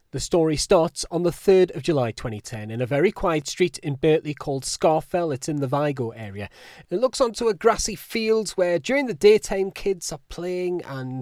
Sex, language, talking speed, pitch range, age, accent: male, English, 200 wpm, 130-175 Hz, 30-49, British